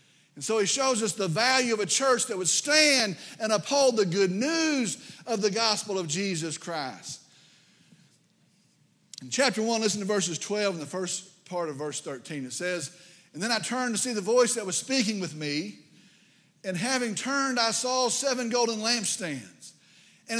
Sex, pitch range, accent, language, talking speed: male, 185-240 Hz, American, English, 180 wpm